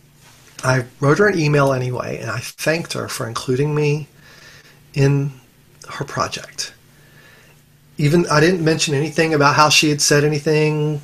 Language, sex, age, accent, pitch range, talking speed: English, male, 40-59, American, 130-155 Hz, 145 wpm